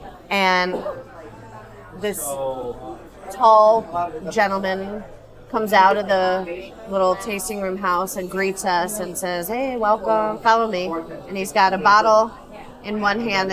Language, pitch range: English, 185-235 Hz